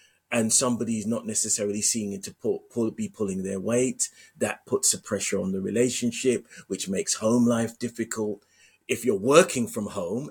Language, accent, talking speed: English, British, 175 wpm